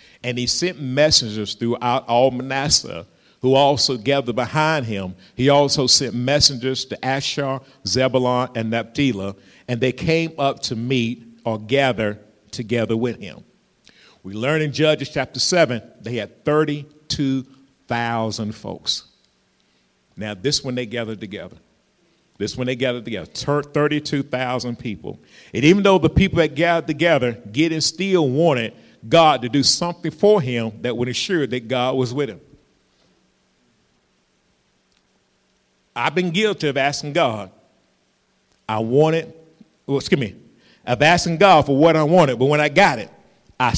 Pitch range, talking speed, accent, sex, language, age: 120-155 Hz, 145 wpm, American, male, English, 50-69